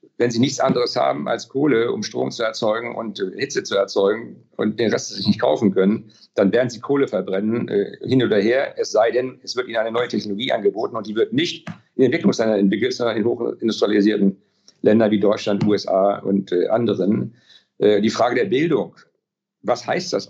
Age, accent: 50-69, German